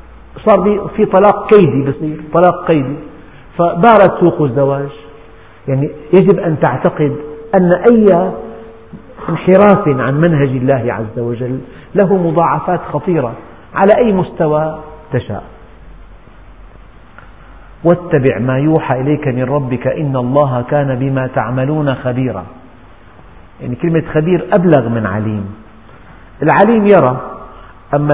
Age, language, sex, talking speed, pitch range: 50-69, Arabic, male, 105 wpm, 130-170 Hz